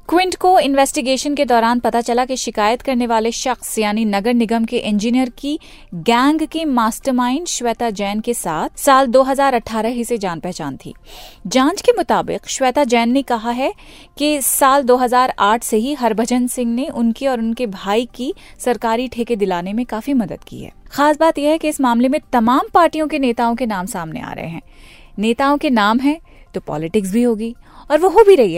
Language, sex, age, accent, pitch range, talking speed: Hindi, female, 30-49, native, 220-280 Hz, 190 wpm